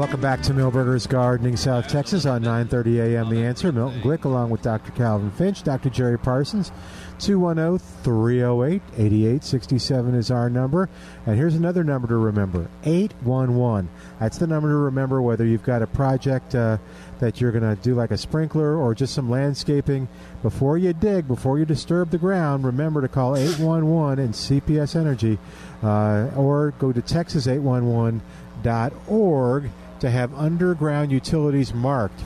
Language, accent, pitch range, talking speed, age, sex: English, American, 115-150 Hz, 150 wpm, 50-69, male